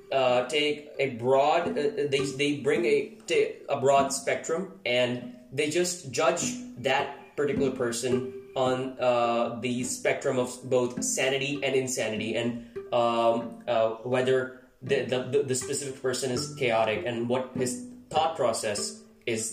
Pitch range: 120-155 Hz